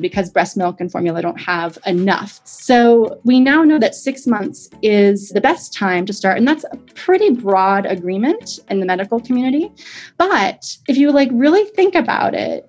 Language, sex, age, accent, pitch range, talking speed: English, female, 20-39, American, 185-250 Hz, 185 wpm